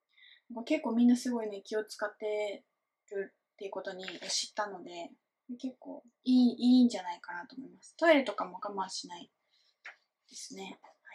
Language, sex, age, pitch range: Japanese, female, 20-39, 215-300 Hz